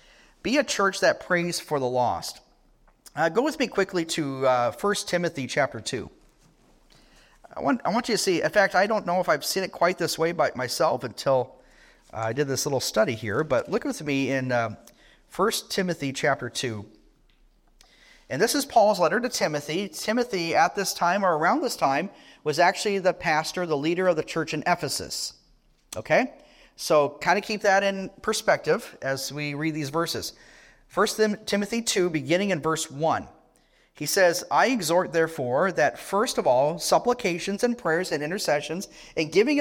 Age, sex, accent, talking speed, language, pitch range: 40-59, male, American, 180 wpm, English, 145-195 Hz